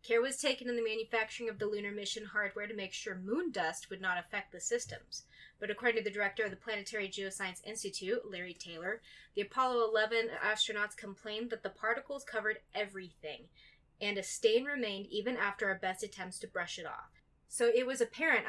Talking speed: 195 wpm